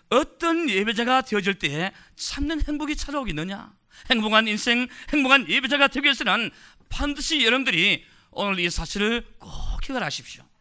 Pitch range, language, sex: 140-220 Hz, Korean, male